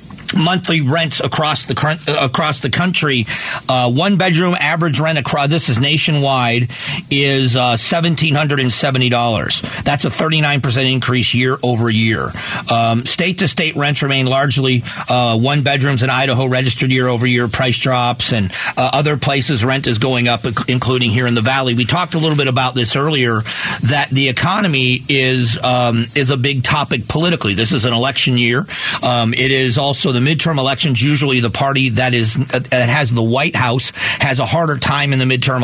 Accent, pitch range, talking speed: American, 125-145 Hz, 185 wpm